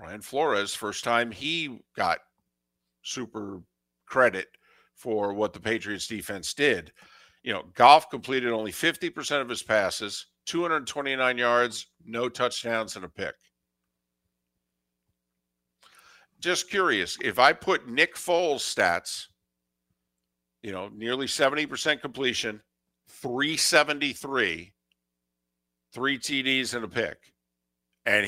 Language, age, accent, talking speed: English, 50-69, American, 105 wpm